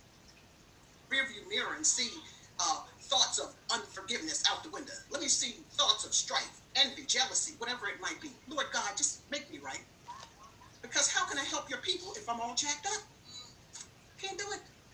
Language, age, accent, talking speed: English, 50-69, American, 180 wpm